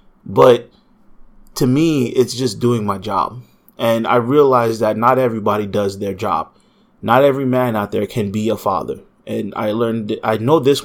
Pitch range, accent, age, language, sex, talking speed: 105-130 Hz, American, 30-49, English, male, 175 wpm